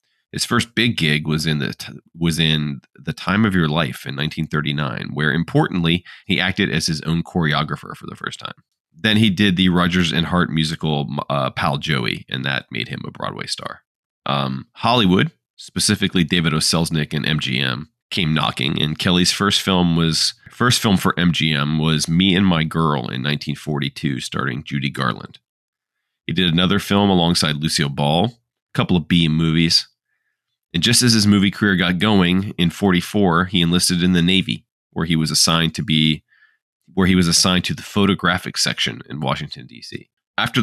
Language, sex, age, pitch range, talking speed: English, male, 30-49, 75-90 Hz, 175 wpm